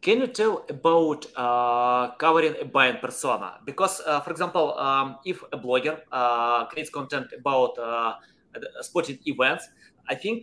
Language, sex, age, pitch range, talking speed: English, male, 20-39, 125-170 Hz, 150 wpm